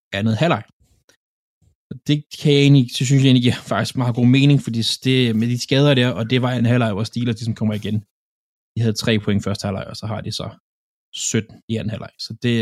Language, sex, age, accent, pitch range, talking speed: Danish, male, 20-39, native, 115-145 Hz, 230 wpm